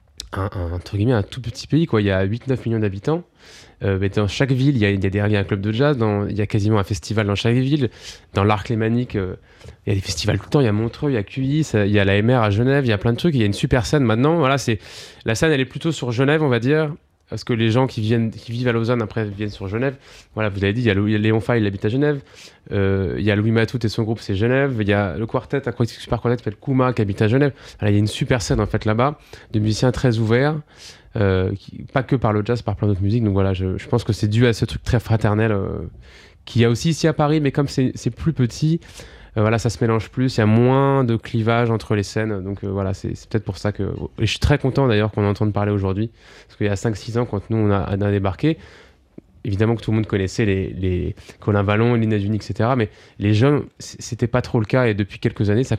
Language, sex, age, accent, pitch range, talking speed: French, male, 20-39, French, 105-125 Hz, 280 wpm